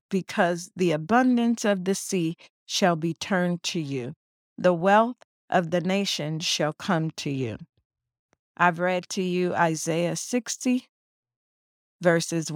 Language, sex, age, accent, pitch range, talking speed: English, female, 50-69, American, 170-205 Hz, 130 wpm